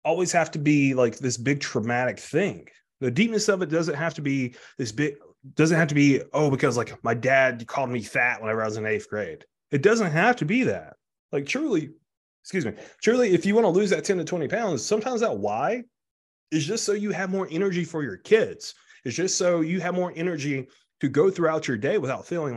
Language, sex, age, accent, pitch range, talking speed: English, male, 30-49, American, 130-190 Hz, 225 wpm